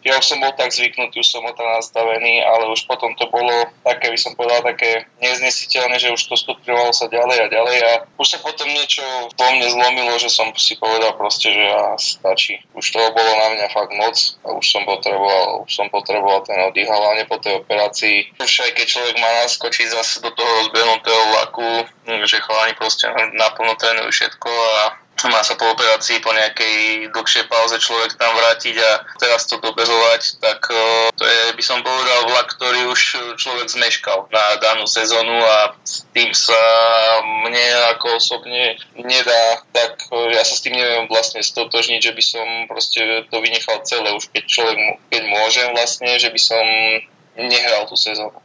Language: Slovak